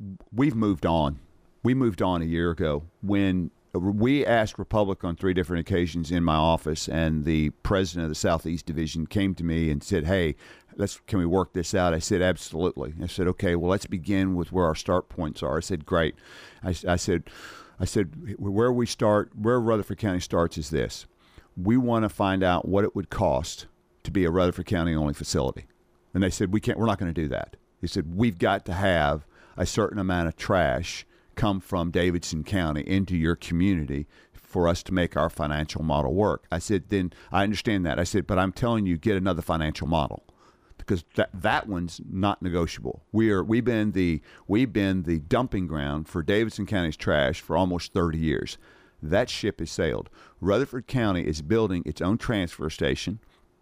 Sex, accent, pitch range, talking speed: male, American, 85-100 Hz, 195 wpm